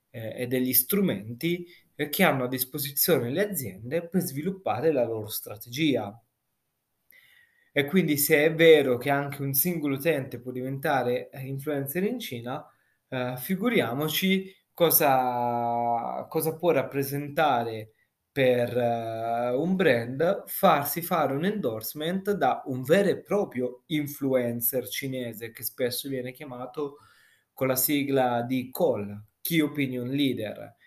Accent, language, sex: native, Italian, male